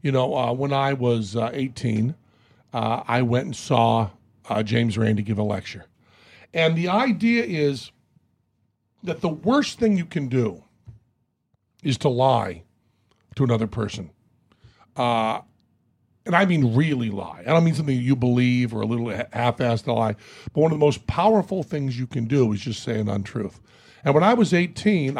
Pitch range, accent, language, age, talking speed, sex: 115-150 Hz, American, English, 50-69, 175 wpm, male